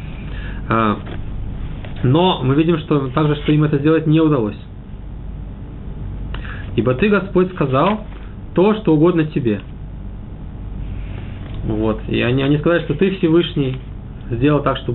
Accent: native